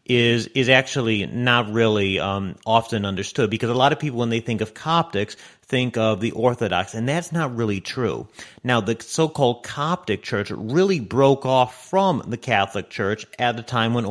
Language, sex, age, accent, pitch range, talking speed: English, male, 40-59, American, 105-130 Hz, 185 wpm